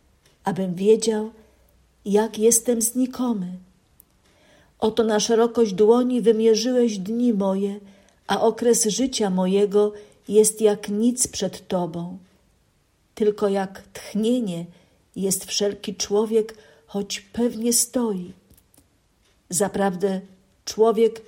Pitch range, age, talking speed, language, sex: 190-230 Hz, 50-69, 90 wpm, Polish, female